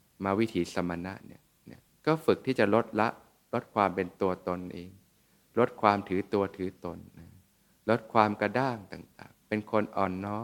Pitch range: 90-110 Hz